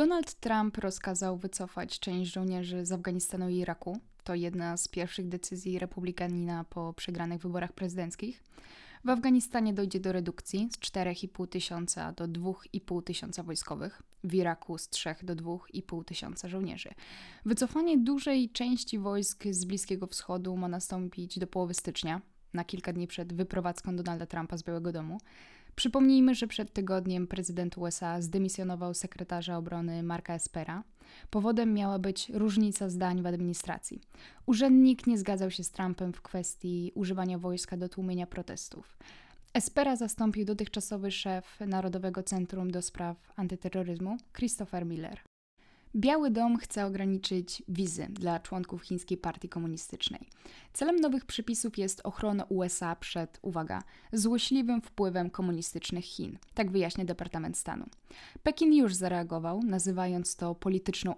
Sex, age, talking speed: female, 10-29, 135 wpm